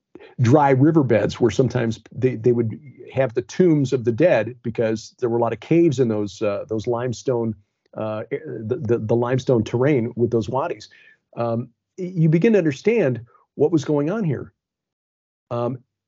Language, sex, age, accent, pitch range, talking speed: English, male, 40-59, American, 115-140 Hz, 170 wpm